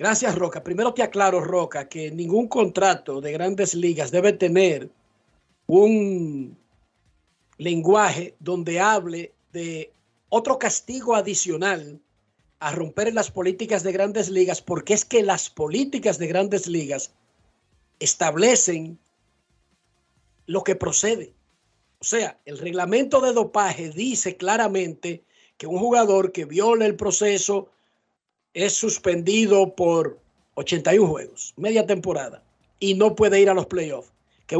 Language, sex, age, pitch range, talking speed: Spanish, male, 50-69, 175-215 Hz, 125 wpm